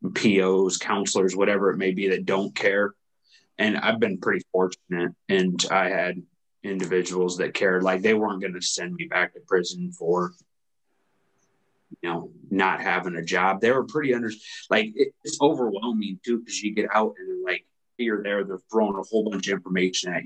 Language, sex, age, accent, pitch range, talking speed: English, male, 20-39, American, 95-115 Hz, 185 wpm